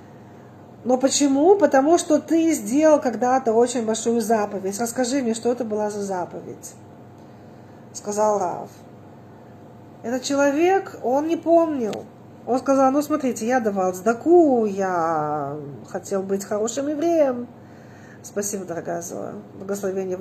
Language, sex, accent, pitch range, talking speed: Russian, female, native, 180-250 Hz, 120 wpm